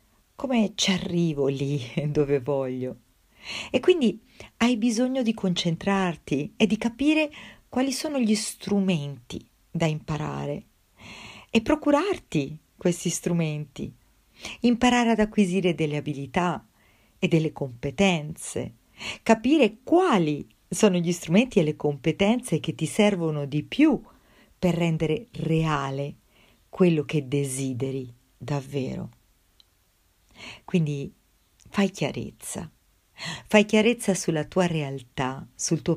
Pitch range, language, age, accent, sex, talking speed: 140-200 Hz, Italian, 40-59, native, female, 105 wpm